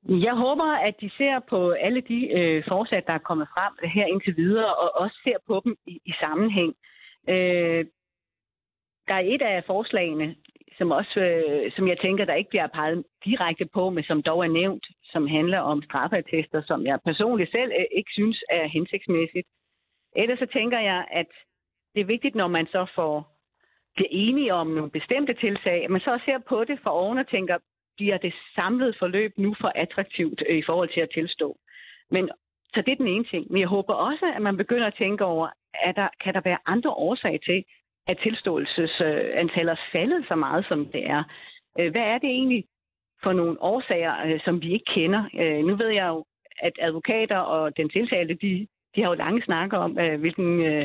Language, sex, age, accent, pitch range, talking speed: Danish, female, 40-59, native, 165-220 Hz, 190 wpm